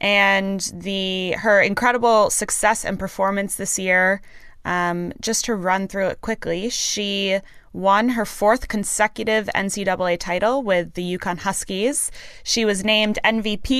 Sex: female